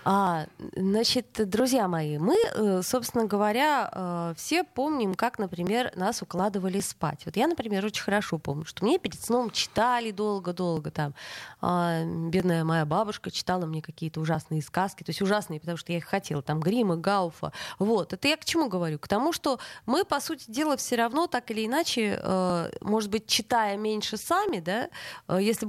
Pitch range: 185-250 Hz